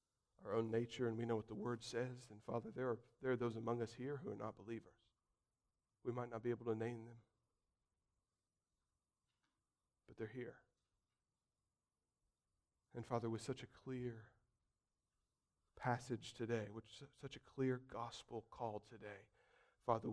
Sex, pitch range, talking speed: male, 105-120 Hz, 150 wpm